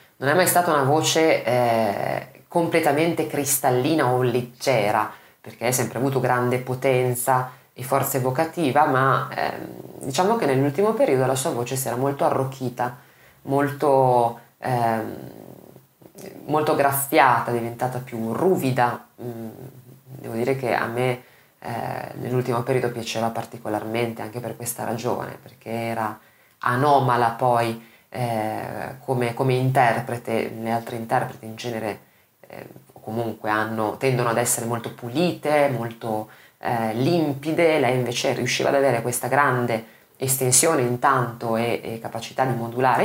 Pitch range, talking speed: 115-135 Hz, 125 wpm